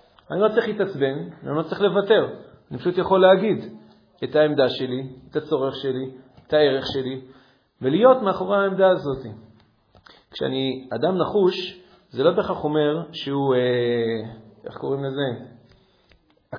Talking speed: 135 wpm